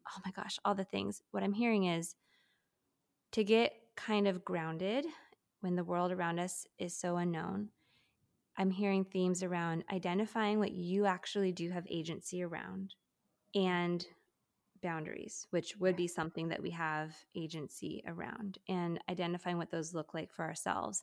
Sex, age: female, 20-39